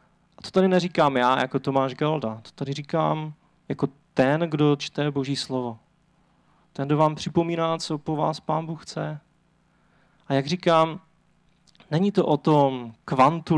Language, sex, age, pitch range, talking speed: Czech, male, 30-49, 135-170 Hz, 150 wpm